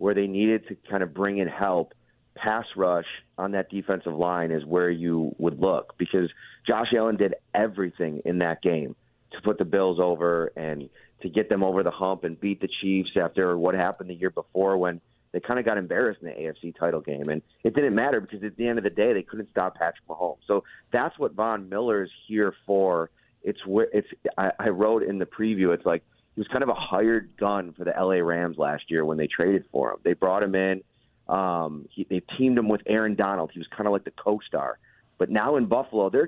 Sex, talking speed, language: male, 225 wpm, English